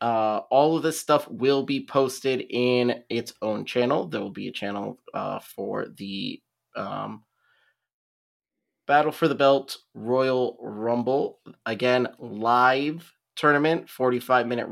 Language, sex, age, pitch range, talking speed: English, male, 20-39, 115-130 Hz, 125 wpm